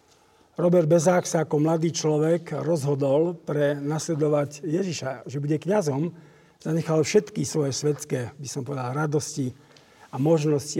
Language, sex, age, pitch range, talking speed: Slovak, male, 50-69, 140-165 Hz, 130 wpm